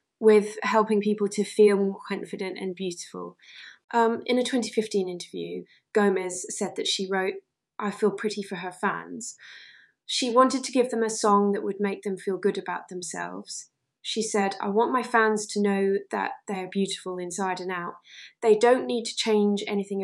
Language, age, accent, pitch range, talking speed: English, 20-39, British, 195-215 Hz, 180 wpm